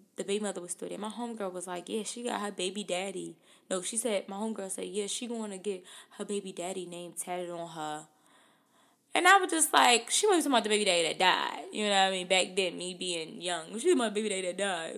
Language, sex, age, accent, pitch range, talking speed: English, female, 20-39, American, 180-235 Hz, 265 wpm